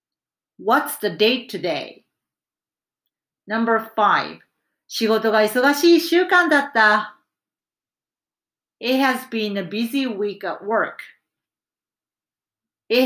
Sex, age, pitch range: female, 40-59, 195-265 Hz